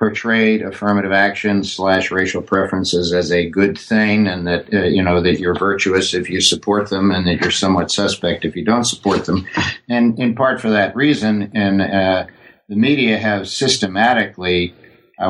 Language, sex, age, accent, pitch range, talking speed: English, male, 60-79, American, 95-105 Hz, 175 wpm